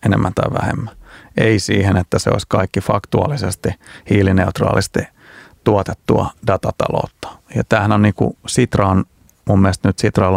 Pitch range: 95-110 Hz